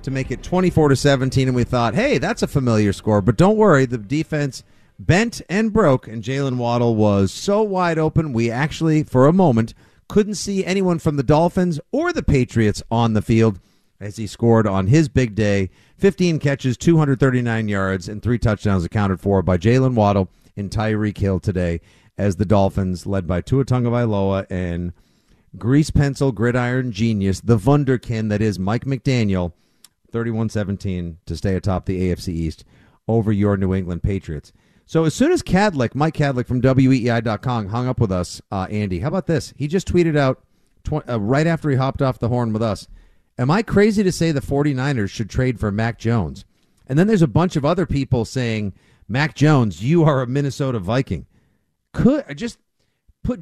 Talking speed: 185 wpm